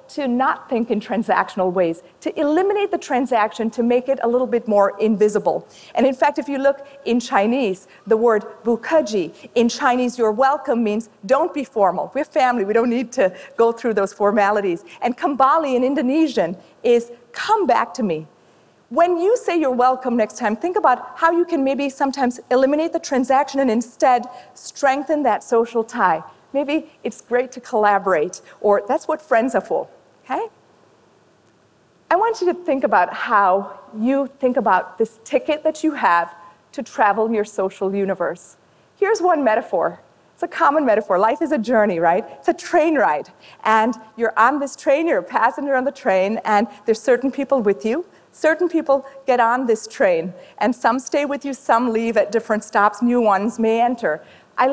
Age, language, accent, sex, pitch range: 40-59, Chinese, American, female, 220-280 Hz